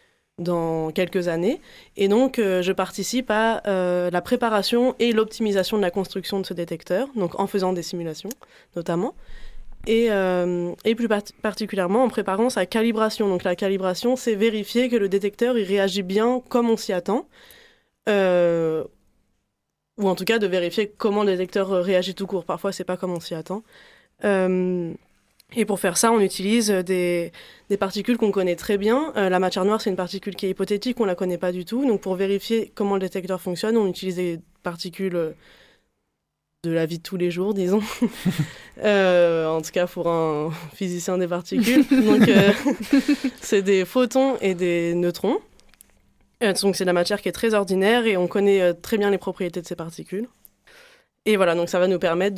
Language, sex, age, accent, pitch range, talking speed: French, female, 20-39, French, 180-220 Hz, 190 wpm